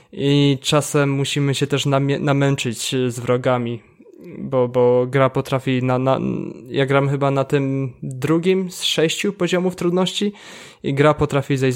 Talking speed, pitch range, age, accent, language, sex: 145 wpm, 125-145 Hz, 20-39, native, Polish, male